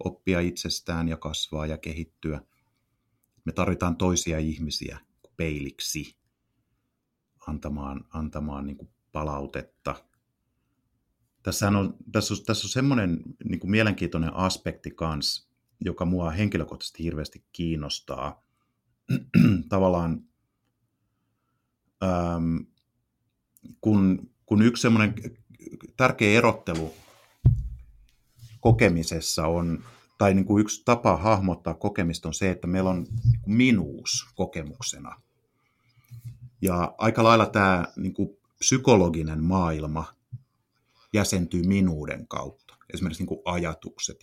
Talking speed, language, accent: 85 wpm, Finnish, native